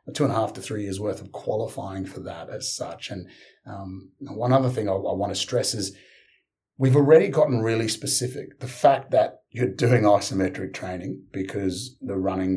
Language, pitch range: English, 95-125 Hz